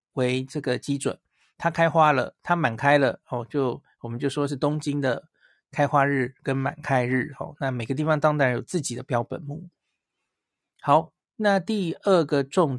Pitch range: 130-170 Hz